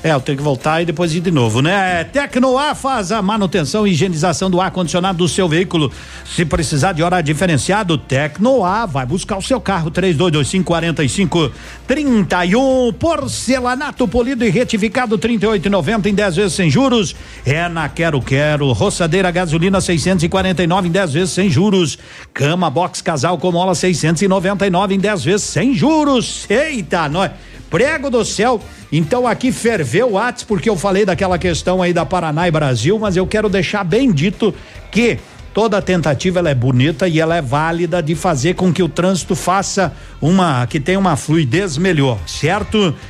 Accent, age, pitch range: Brazilian, 60-79, 165-205 Hz